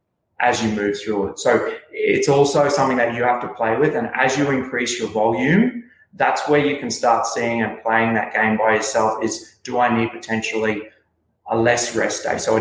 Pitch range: 115-130 Hz